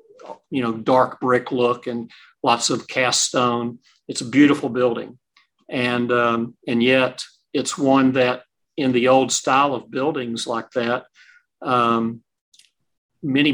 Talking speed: 135 wpm